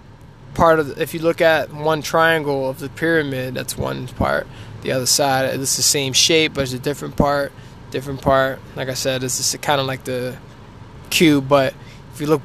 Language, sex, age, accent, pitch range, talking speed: English, male, 20-39, American, 125-165 Hz, 200 wpm